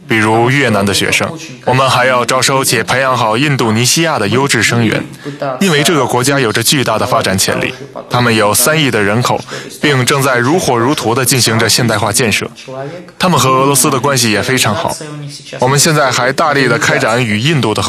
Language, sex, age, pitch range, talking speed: Russian, male, 20-39, 110-140 Hz, 35 wpm